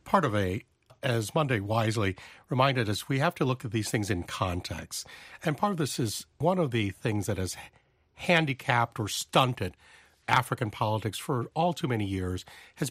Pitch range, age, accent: 110-145 Hz, 50-69, American